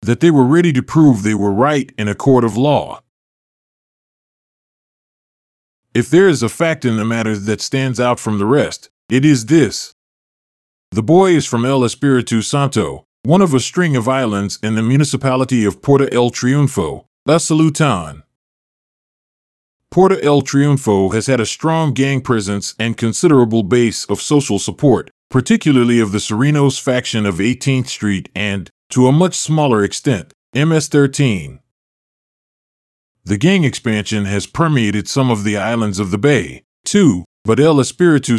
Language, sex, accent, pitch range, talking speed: English, male, American, 110-145 Hz, 155 wpm